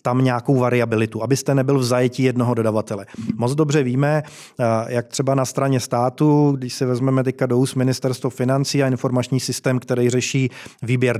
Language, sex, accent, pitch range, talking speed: Czech, male, native, 120-140 Hz, 165 wpm